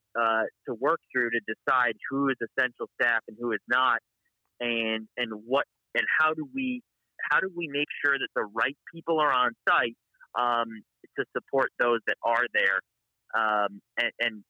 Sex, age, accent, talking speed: male, 30-49, American, 180 wpm